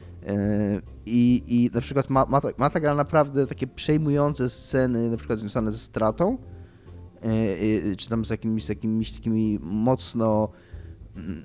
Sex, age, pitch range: male, 20-39, 105-135 Hz